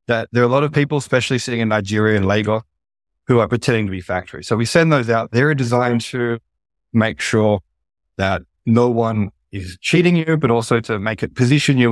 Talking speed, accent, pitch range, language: 210 wpm, Australian, 110-135 Hz, English